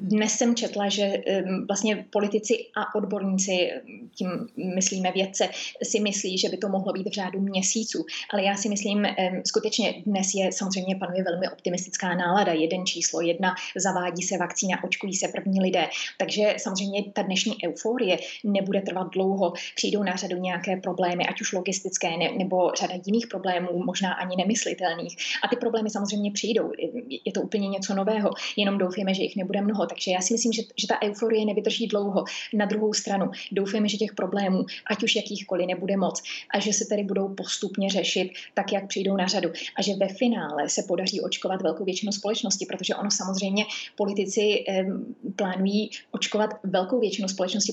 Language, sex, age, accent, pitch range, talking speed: Czech, female, 20-39, native, 185-210 Hz, 170 wpm